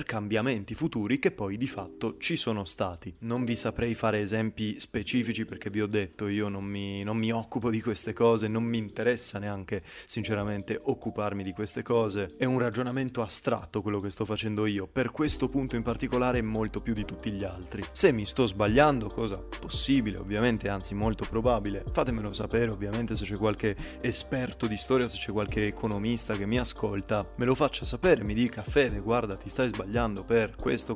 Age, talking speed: 20-39, 185 wpm